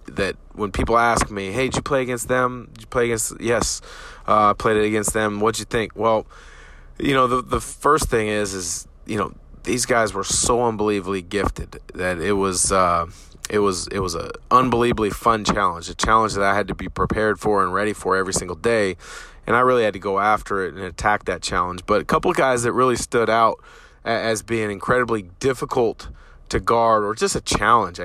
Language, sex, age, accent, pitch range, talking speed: English, male, 30-49, American, 100-120 Hz, 215 wpm